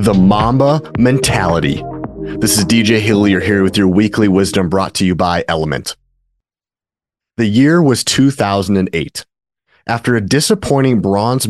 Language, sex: English, male